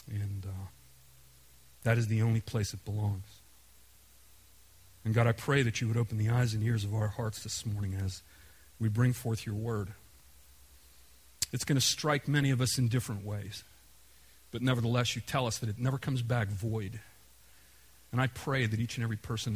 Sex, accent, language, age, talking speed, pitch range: male, American, English, 40-59, 185 wpm, 100-130 Hz